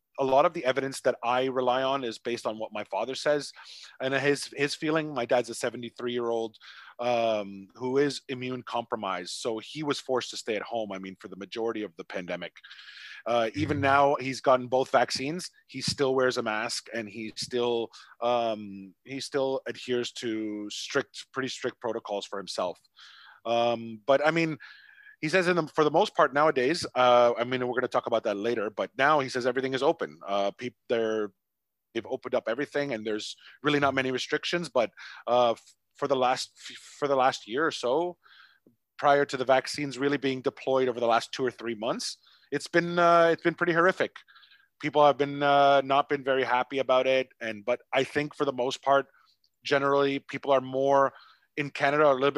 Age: 30-49